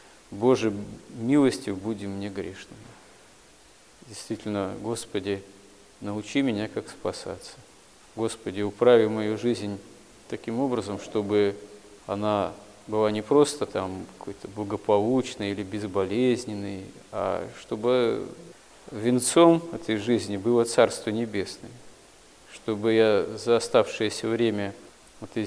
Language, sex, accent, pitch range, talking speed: Russian, male, native, 100-120 Hz, 95 wpm